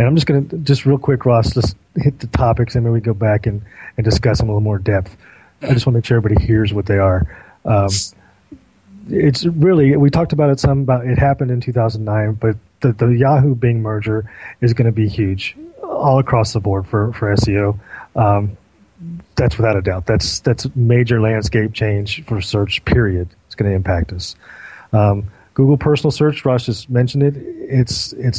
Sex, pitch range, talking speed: male, 105-140 Hz, 205 wpm